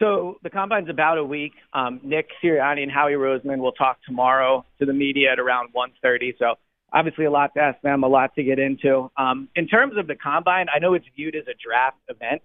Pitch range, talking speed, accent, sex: 130-155 Hz, 230 wpm, American, male